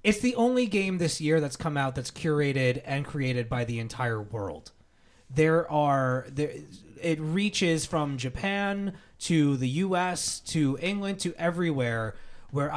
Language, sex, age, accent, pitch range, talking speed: English, male, 30-49, American, 130-165 Hz, 150 wpm